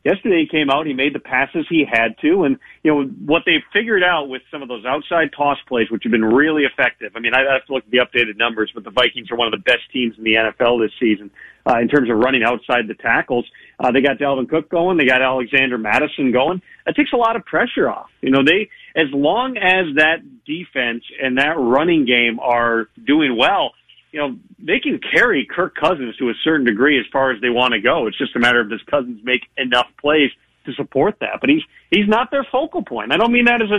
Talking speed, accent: 245 wpm, American